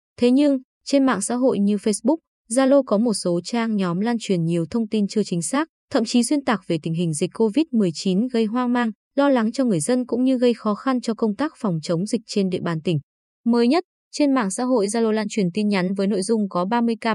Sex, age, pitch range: female, 20-39, 195-245 Hz